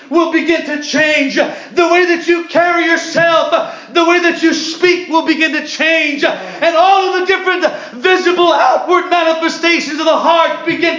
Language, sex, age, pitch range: English, male, 40-59, 280-345 Hz